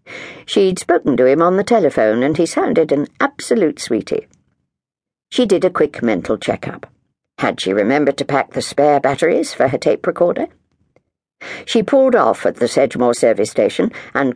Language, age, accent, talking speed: English, 60-79, British, 165 wpm